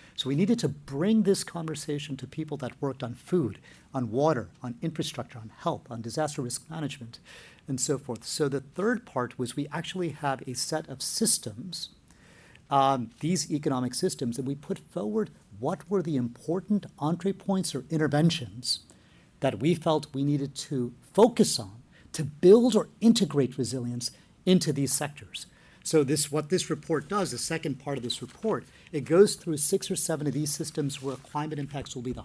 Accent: American